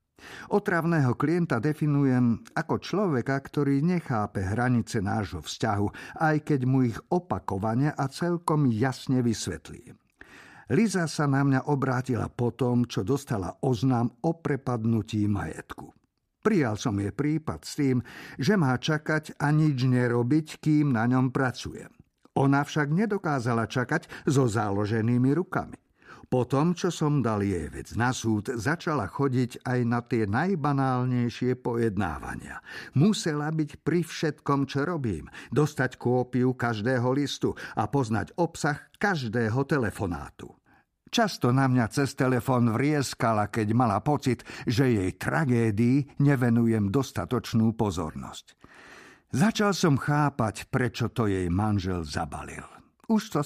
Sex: male